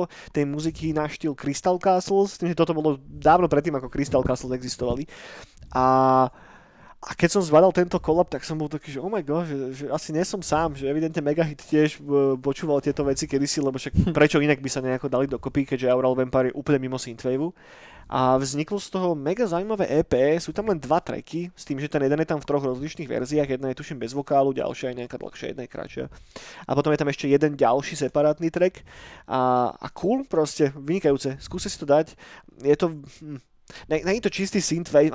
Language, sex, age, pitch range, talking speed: Slovak, male, 20-39, 135-165 Hz, 205 wpm